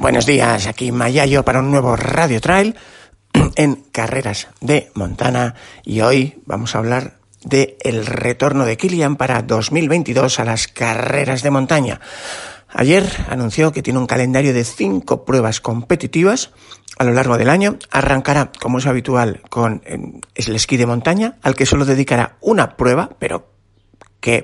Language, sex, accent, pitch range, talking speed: Spanish, male, Spanish, 115-150 Hz, 150 wpm